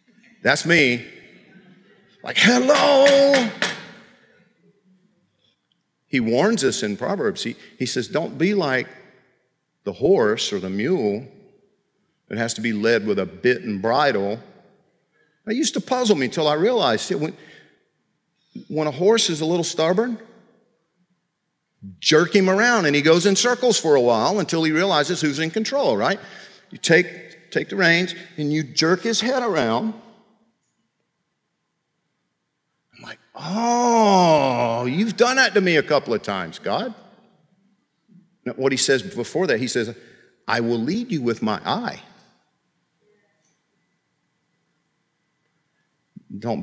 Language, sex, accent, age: English, male, American, 50-69